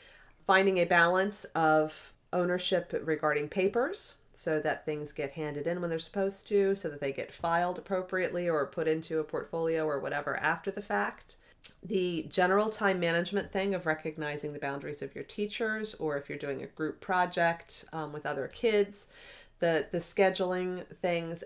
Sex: female